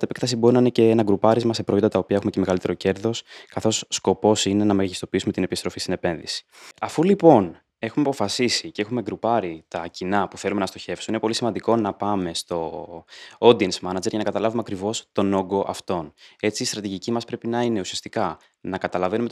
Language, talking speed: Greek, 200 wpm